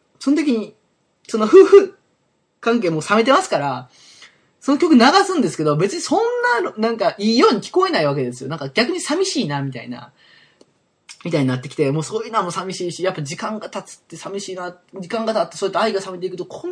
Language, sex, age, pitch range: Japanese, male, 20-39, 150-220 Hz